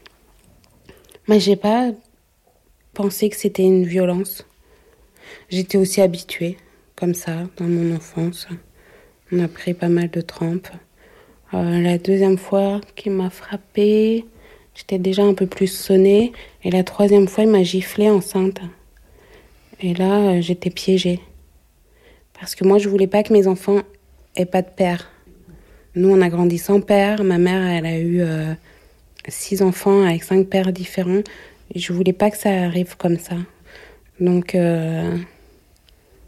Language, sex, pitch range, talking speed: French, female, 180-205 Hz, 150 wpm